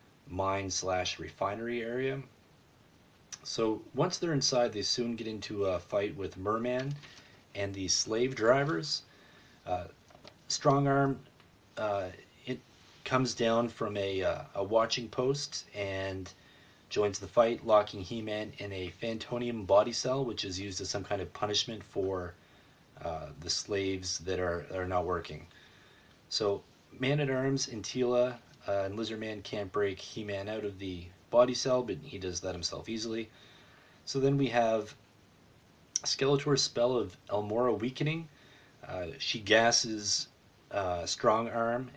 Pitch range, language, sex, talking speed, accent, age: 95-125 Hz, English, male, 140 wpm, American, 30-49